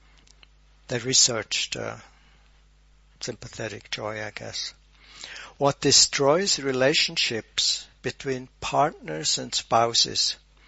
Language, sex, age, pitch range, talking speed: English, male, 60-79, 120-145 Hz, 80 wpm